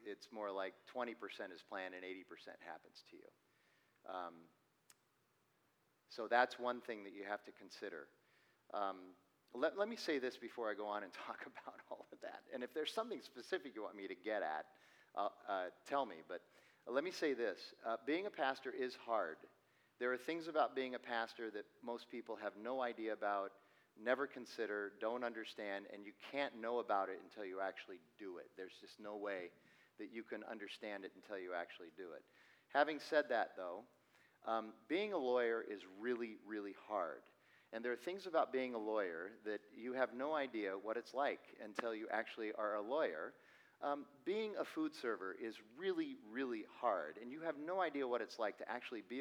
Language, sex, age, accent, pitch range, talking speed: English, male, 40-59, American, 105-160 Hz, 195 wpm